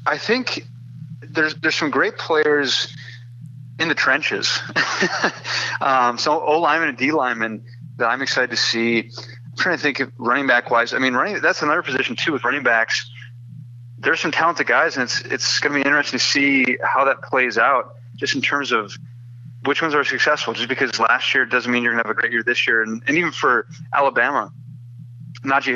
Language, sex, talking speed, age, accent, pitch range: English, male, 195 wpm, 30-49, American, 120-130 Hz